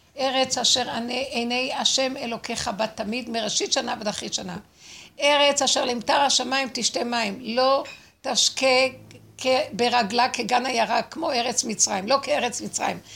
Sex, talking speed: female, 130 wpm